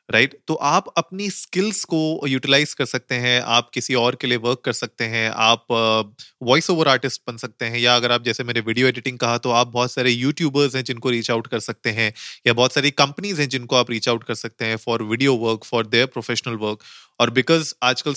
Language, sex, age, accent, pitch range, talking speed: Hindi, male, 30-49, native, 115-135 Hz, 225 wpm